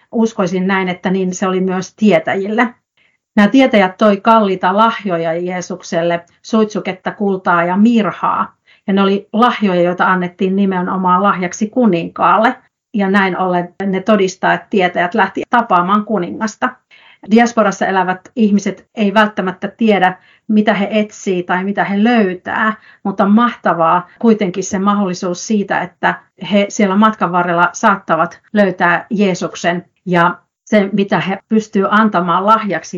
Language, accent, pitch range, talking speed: Finnish, native, 180-220 Hz, 130 wpm